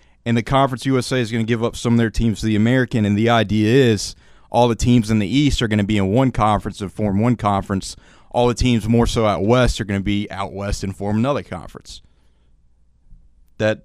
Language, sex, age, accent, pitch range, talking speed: English, male, 30-49, American, 90-130 Hz, 240 wpm